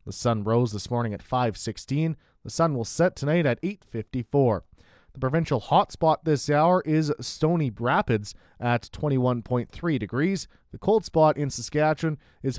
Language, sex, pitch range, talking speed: English, male, 115-150 Hz, 155 wpm